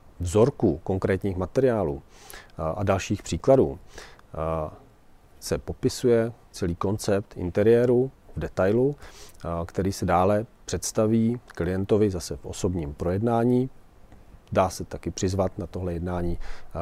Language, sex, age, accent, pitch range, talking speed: Czech, male, 40-59, native, 85-110 Hz, 105 wpm